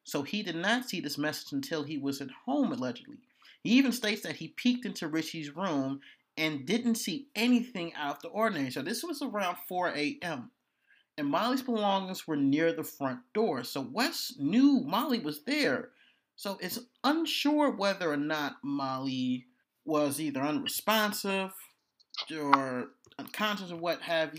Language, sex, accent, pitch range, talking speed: English, male, American, 150-240 Hz, 160 wpm